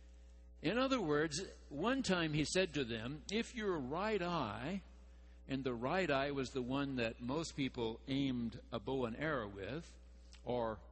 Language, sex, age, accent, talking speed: English, male, 60-79, American, 165 wpm